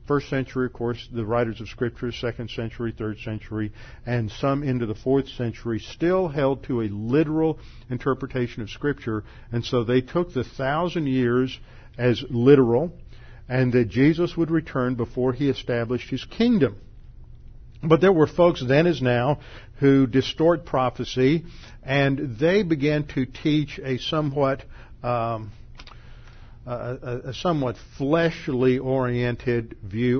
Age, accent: 50-69, American